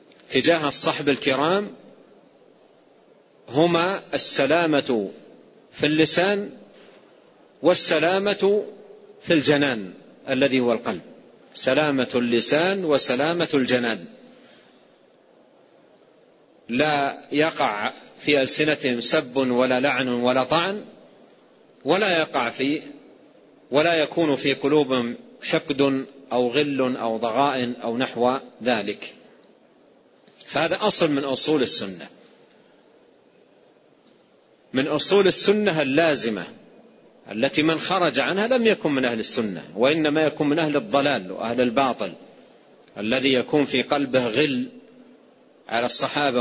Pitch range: 125-160 Hz